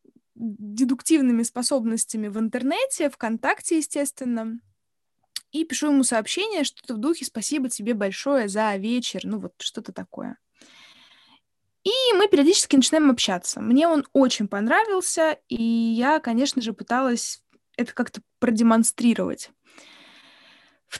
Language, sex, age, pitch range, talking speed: Russian, female, 20-39, 225-295 Hz, 115 wpm